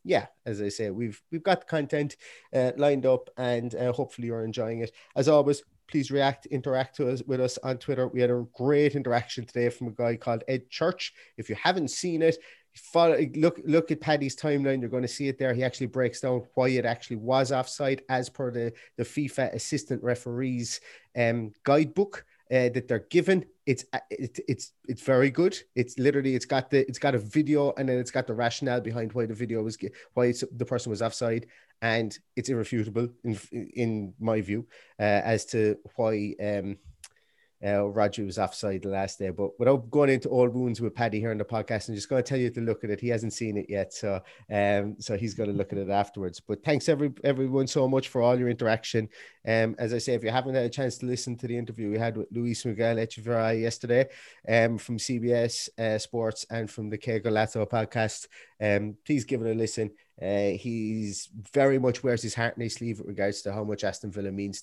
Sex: male